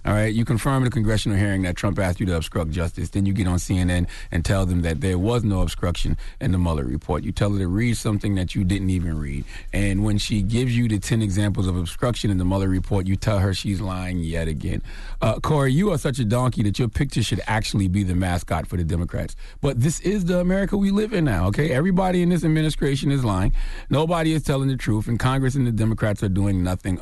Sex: male